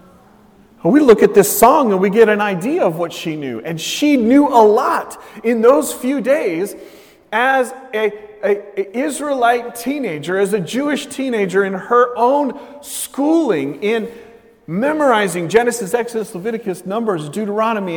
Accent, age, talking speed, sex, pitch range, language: American, 40-59, 140 wpm, male, 205-270 Hz, English